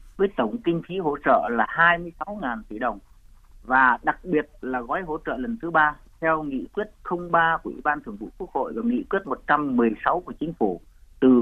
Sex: male